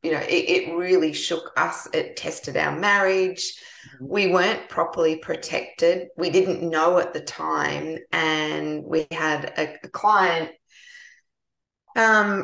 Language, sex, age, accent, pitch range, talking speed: English, female, 20-39, Australian, 160-185 Hz, 135 wpm